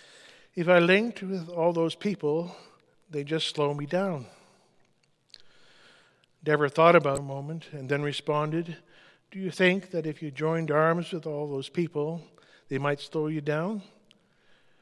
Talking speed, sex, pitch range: 155 wpm, male, 145-180 Hz